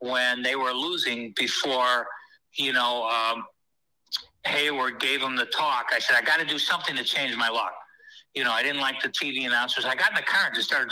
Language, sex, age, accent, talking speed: English, male, 60-79, American, 220 wpm